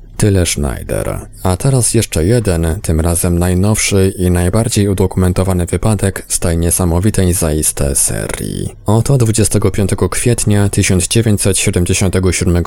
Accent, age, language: native, 20-39, Polish